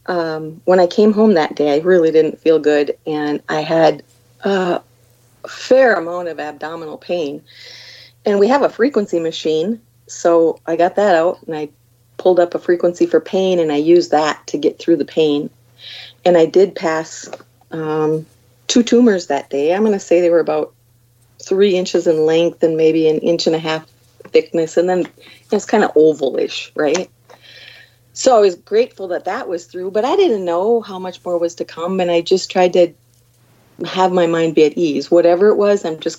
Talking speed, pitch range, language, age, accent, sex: 195 wpm, 155-200 Hz, English, 40-59, American, female